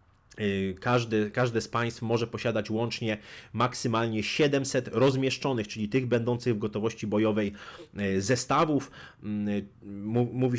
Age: 30-49